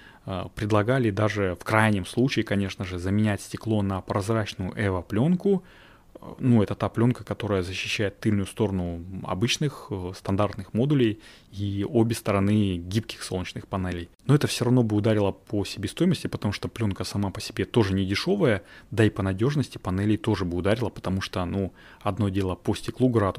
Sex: male